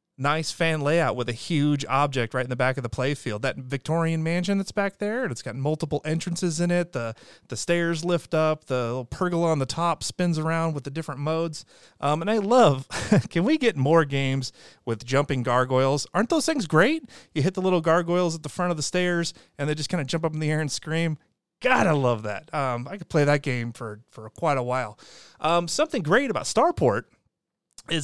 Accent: American